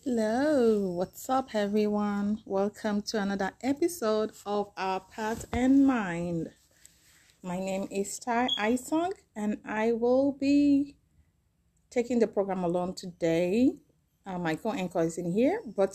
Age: 30-49